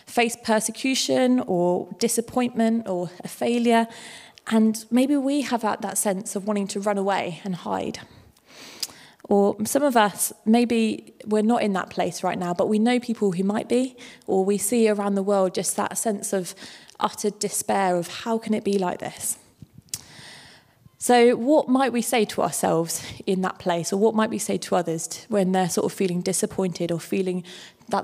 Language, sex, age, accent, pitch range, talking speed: English, female, 20-39, British, 185-230 Hz, 180 wpm